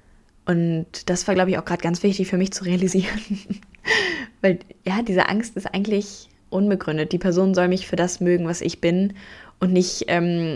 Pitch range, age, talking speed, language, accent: 170-195 Hz, 10-29, 190 wpm, German, German